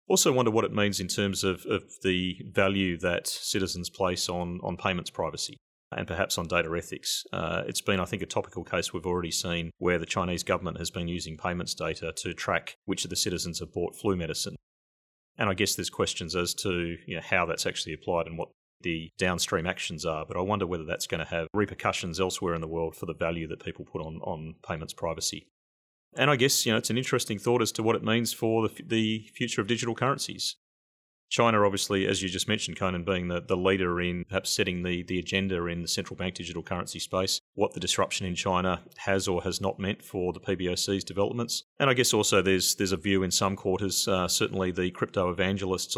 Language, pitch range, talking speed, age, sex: English, 90-100 Hz, 225 wpm, 30-49, male